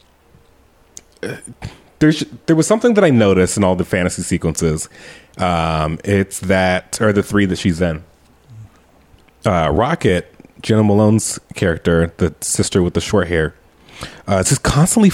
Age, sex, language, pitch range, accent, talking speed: 30-49, male, English, 90-125 Hz, American, 145 wpm